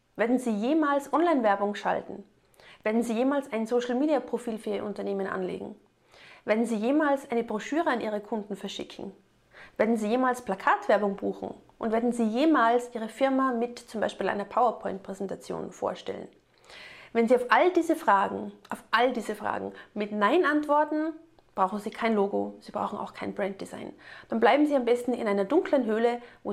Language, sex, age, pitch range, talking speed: German, female, 30-49, 210-270 Hz, 165 wpm